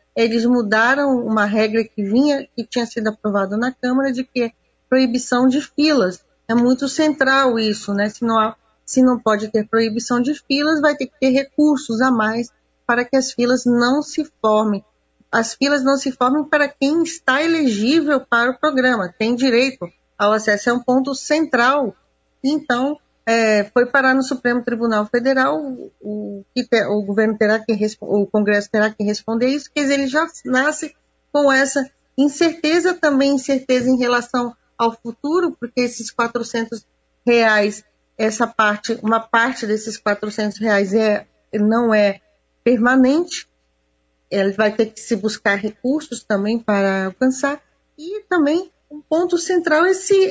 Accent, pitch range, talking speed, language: Brazilian, 220-280 Hz, 155 wpm, Portuguese